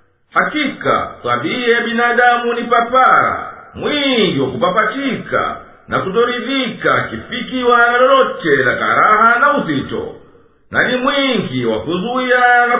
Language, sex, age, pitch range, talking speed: English, male, 50-69, 235-265 Hz, 105 wpm